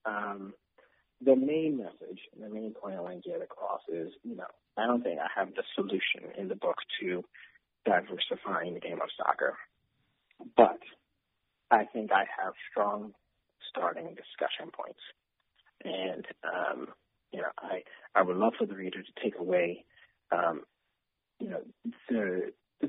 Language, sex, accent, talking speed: English, male, American, 155 wpm